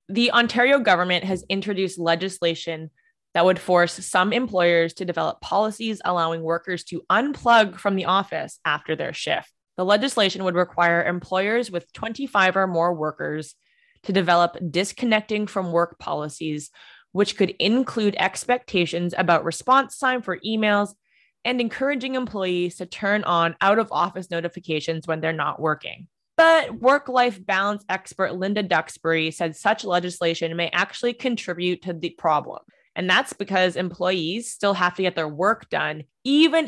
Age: 20-39